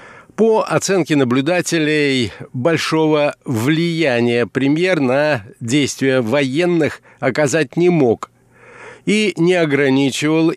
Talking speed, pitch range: 85 wpm, 130-160 Hz